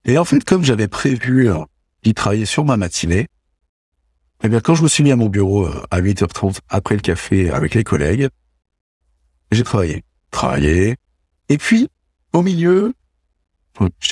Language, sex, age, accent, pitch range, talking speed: French, male, 60-79, French, 90-130 Hz, 165 wpm